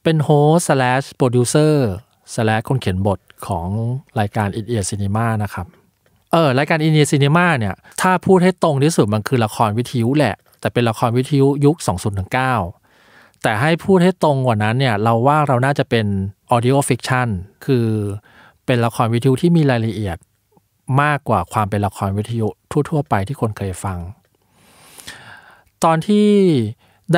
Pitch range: 105-145 Hz